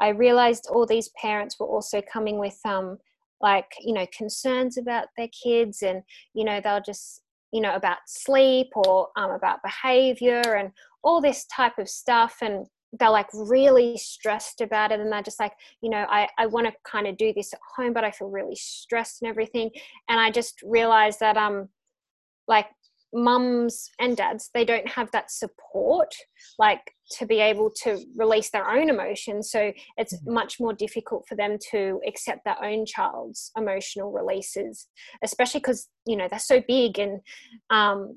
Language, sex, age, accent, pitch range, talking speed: English, female, 10-29, Australian, 210-245 Hz, 180 wpm